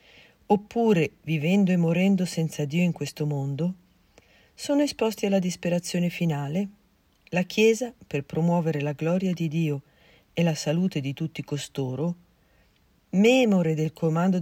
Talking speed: 130 wpm